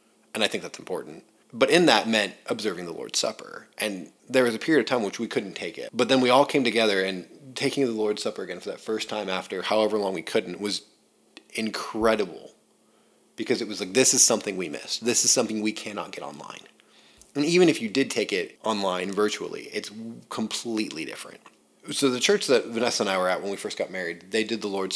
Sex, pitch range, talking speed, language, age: male, 100-120 Hz, 230 wpm, English, 30-49